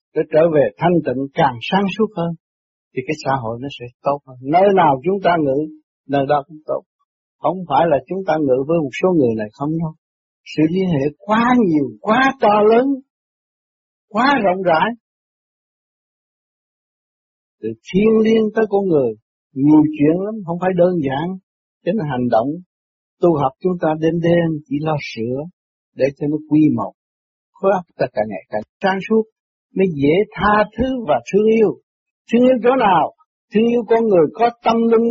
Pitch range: 145-215 Hz